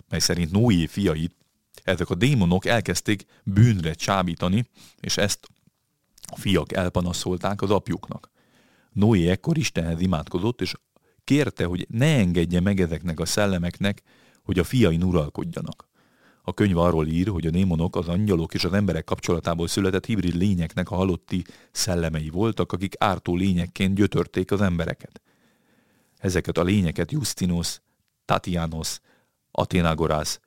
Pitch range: 85-105 Hz